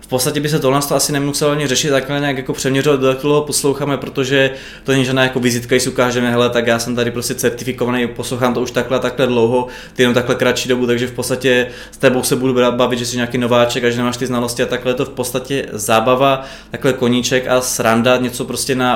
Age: 20-39